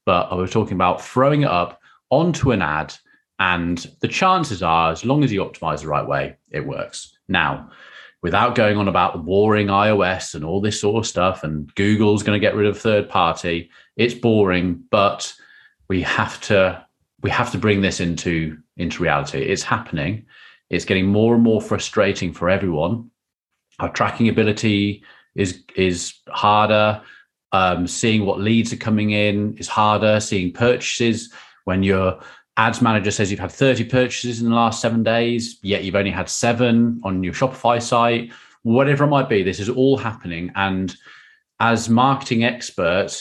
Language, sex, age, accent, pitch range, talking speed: English, male, 30-49, British, 95-115 Hz, 170 wpm